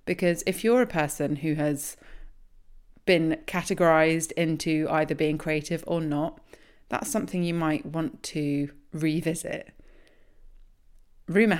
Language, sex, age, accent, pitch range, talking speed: English, female, 30-49, British, 155-190 Hz, 120 wpm